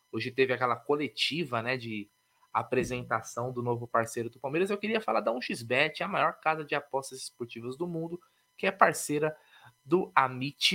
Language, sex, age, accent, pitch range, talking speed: Portuguese, male, 20-39, Brazilian, 130-175 Hz, 165 wpm